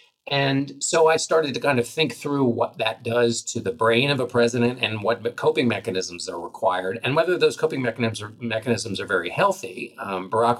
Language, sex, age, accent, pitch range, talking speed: English, male, 50-69, American, 100-130 Hz, 200 wpm